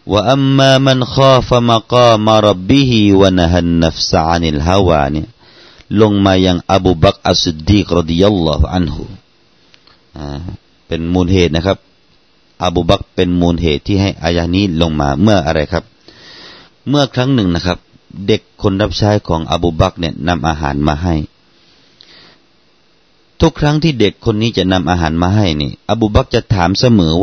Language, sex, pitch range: Thai, male, 85-115 Hz